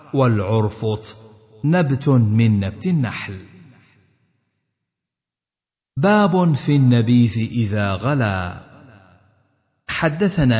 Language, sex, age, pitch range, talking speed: Arabic, male, 50-69, 110-145 Hz, 60 wpm